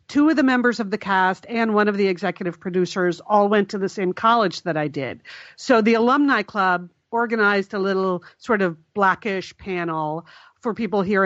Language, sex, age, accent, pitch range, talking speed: English, female, 50-69, American, 180-225 Hz, 190 wpm